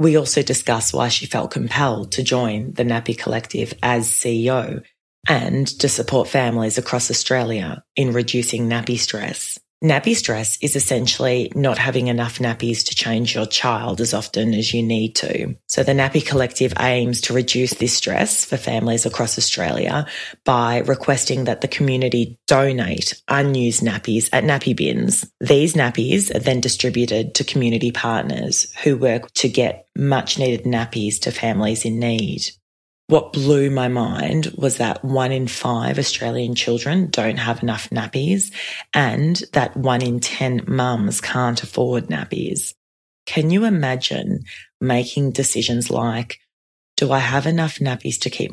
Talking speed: 150 wpm